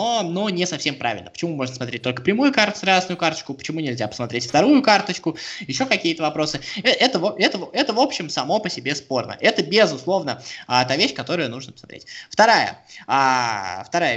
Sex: male